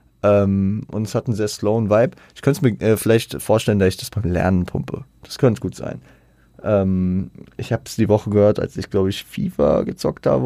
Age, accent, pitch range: 20-39, German, 90-110 Hz